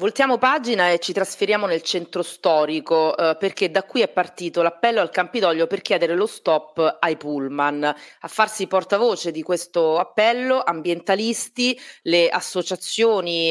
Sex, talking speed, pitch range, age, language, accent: female, 140 wpm, 160-195 Hz, 30-49, Italian, native